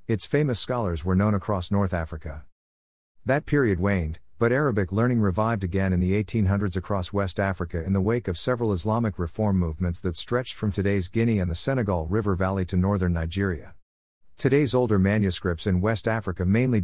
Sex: male